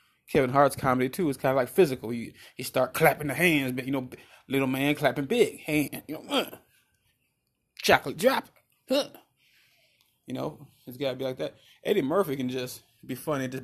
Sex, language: male, English